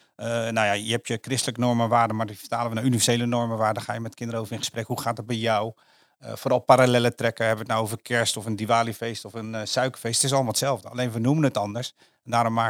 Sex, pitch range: male, 110-135 Hz